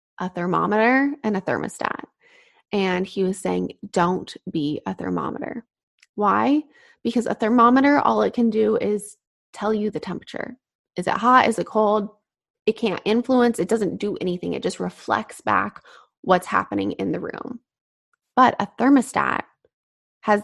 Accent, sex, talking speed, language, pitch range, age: American, female, 155 wpm, English, 200-245 Hz, 20-39